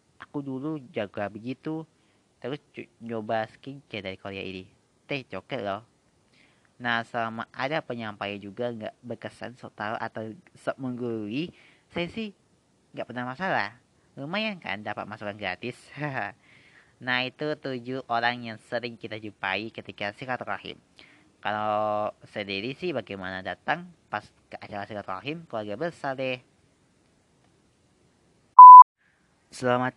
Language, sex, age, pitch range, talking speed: Indonesian, female, 20-39, 95-125 Hz, 120 wpm